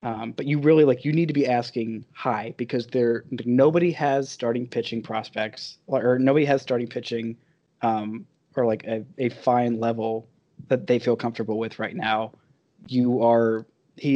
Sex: male